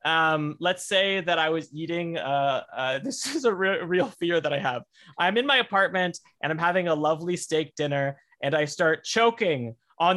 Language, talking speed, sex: English, 200 wpm, male